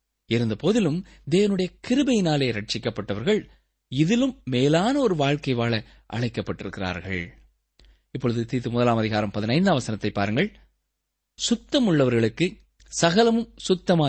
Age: 20-39